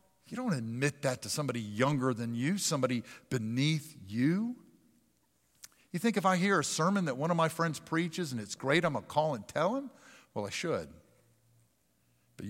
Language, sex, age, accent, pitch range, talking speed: English, male, 50-69, American, 125-205 Hz, 185 wpm